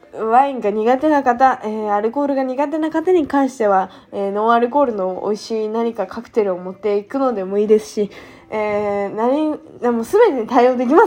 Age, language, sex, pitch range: 20-39, Japanese, female, 205-320 Hz